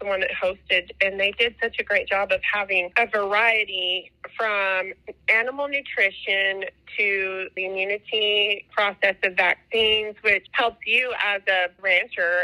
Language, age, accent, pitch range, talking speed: English, 30-49, American, 185-220 Hz, 145 wpm